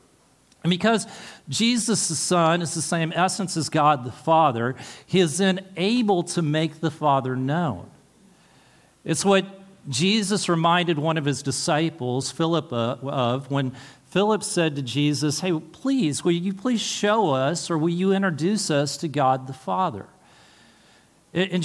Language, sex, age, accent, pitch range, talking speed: English, male, 50-69, American, 140-190 Hz, 150 wpm